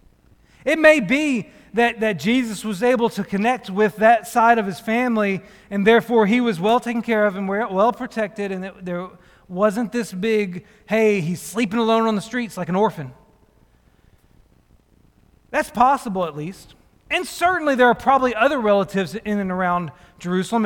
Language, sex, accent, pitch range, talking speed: English, male, American, 180-235 Hz, 170 wpm